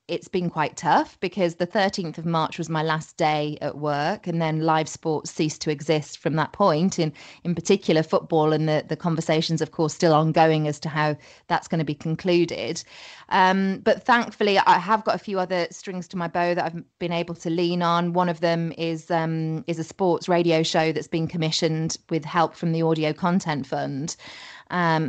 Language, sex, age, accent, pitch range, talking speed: English, female, 20-39, British, 155-175 Hz, 205 wpm